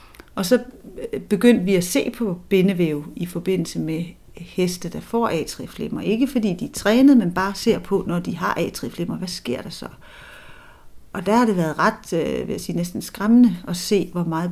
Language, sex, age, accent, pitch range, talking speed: Danish, female, 40-59, native, 170-205 Hz, 200 wpm